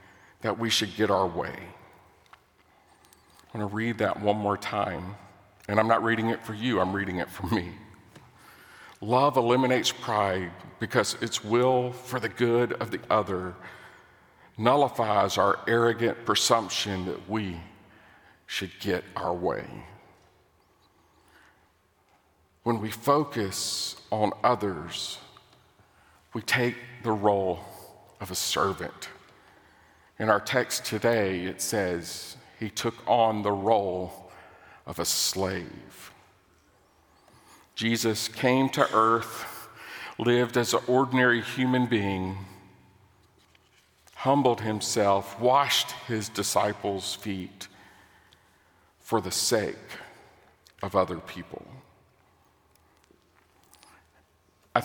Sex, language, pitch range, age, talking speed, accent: male, English, 95-115 Hz, 50-69, 105 wpm, American